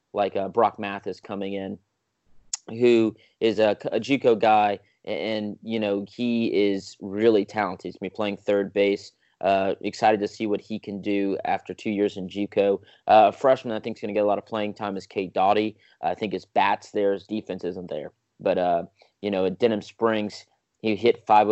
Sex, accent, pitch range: male, American, 100-115 Hz